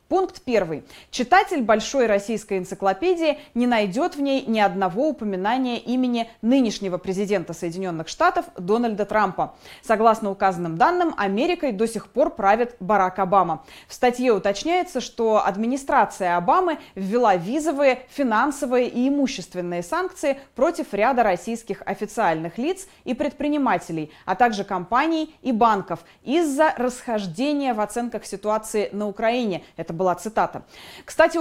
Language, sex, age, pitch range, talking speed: Russian, female, 20-39, 200-275 Hz, 125 wpm